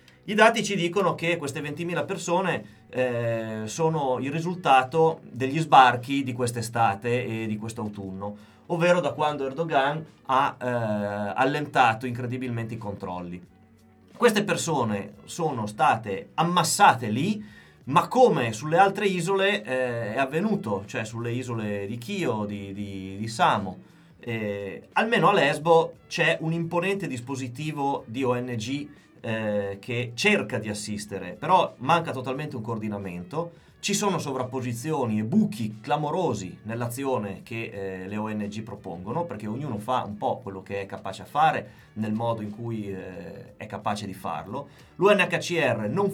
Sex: male